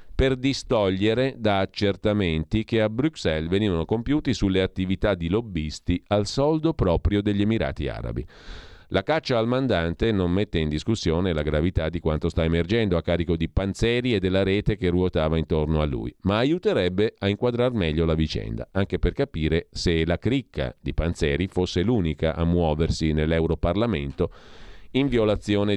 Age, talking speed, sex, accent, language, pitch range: 40-59, 155 wpm, male, native, Italian, 80-105 Hz